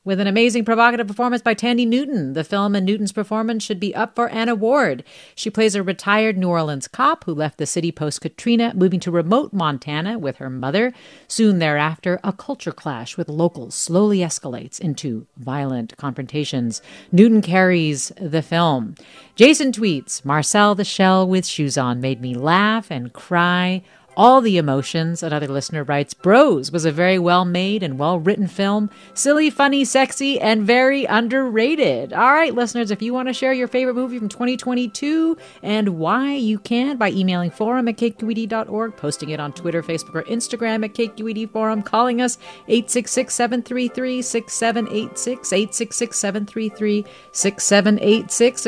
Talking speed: 150 wpm